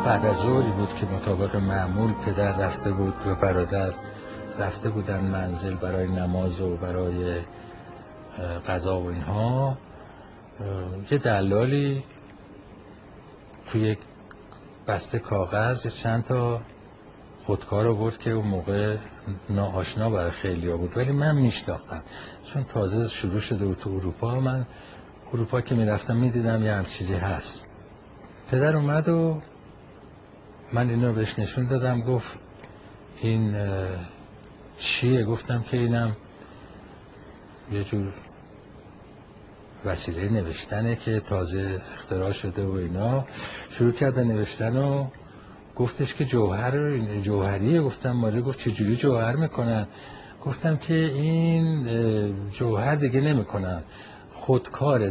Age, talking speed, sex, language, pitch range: 60-79, 110 wpm, male, Persian, 95-125 Hz